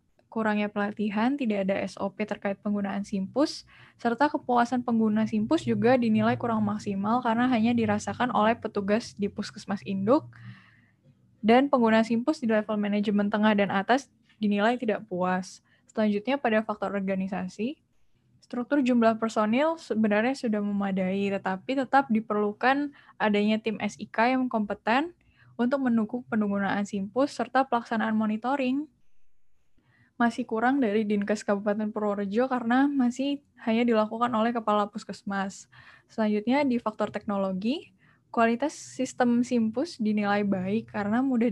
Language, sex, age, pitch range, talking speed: Indonesian, female, 10-29, 205-245 Hz, 125 wpm